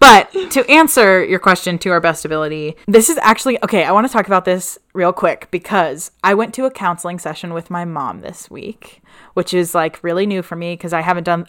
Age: 20-39